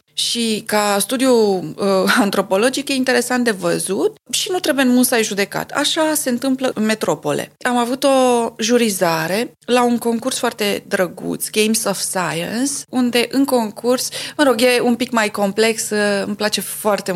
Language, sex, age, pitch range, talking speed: Romanian, female, 20-39, 185-235 Hz, 160 wpm